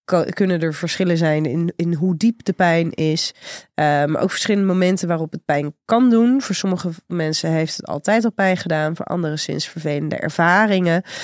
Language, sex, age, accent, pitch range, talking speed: Dutch, female, 30-49, Dutch, 155-190 Hz, 180 wpm